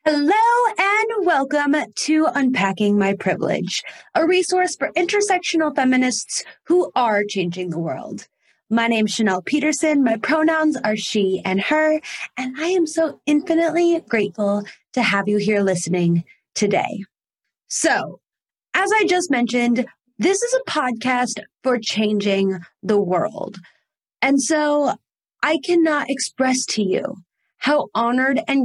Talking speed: 130 wpm